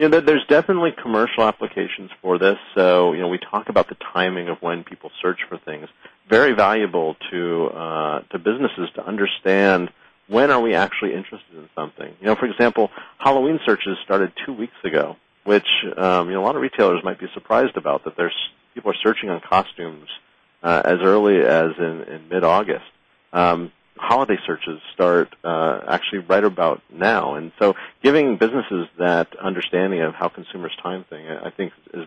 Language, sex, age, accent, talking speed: English, male, 40-59, American, 180 wpm